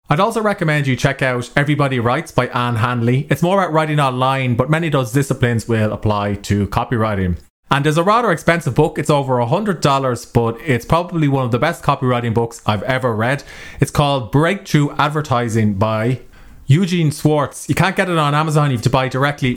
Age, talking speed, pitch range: 30-49, 195 wpm, 115-150 Hz